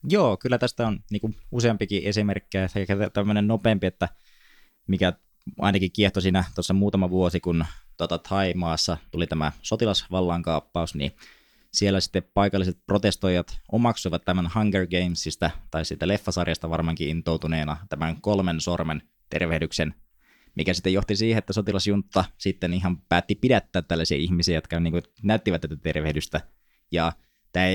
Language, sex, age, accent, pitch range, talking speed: Finnish, male, 20-39, native, 80-100 Hz, 130 wpm